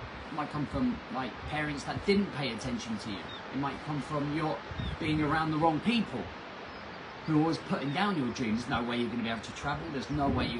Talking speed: 245 wpm